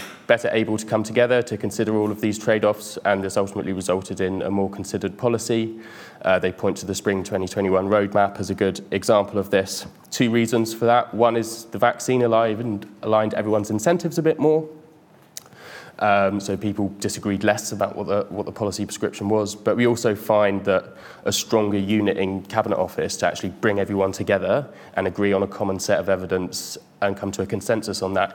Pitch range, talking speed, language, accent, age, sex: 95-115 Hz, 195 wpm, English, British, 20-39, male